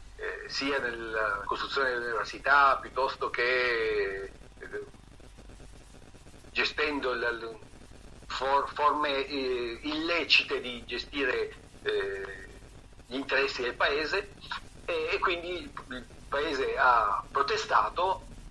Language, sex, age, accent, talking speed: Italian, male, 50-69, native, 70 wpm